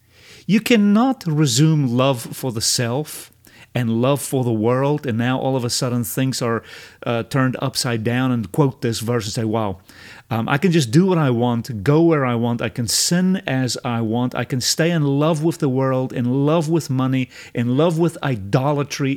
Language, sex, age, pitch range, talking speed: English, male, 40-59, 115-145 Hz, 205 wpm